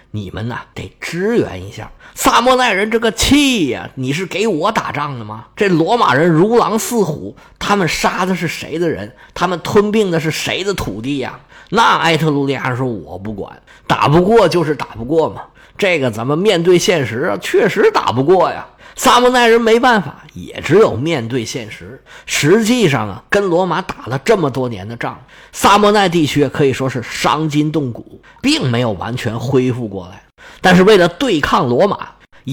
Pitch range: 125-200 Hz